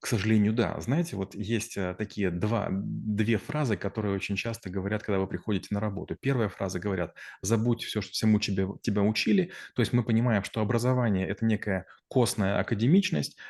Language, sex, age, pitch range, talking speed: Russian, male, 30-49, 100-125 Hz, 175 wpm